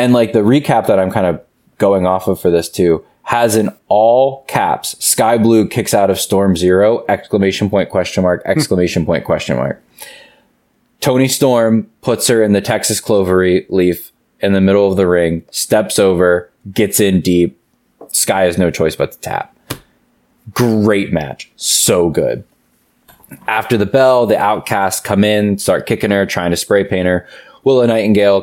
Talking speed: 175 wpm